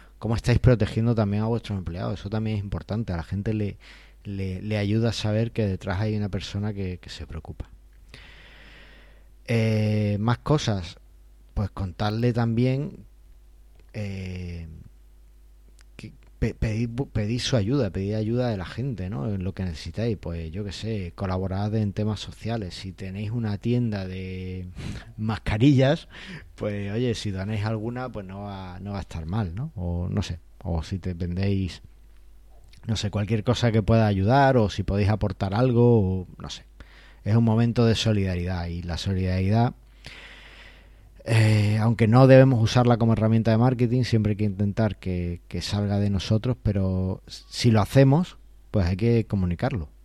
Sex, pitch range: male, 90-115 Hz